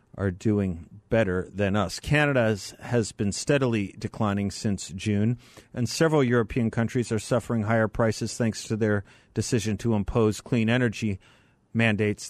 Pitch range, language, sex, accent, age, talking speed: 105-125 Hz, English, male, American, 50-69, 140 wpm